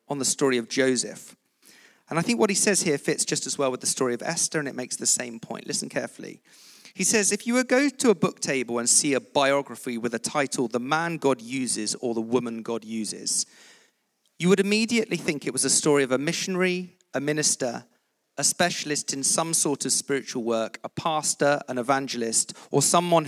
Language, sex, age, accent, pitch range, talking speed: English, male, 40-59, British, 125-165 Hz, 210 wpm